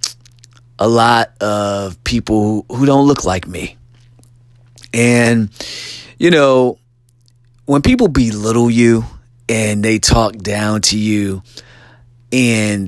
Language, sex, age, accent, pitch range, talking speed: English, male, 30-49, American, 105-120 Hz, 105 wpm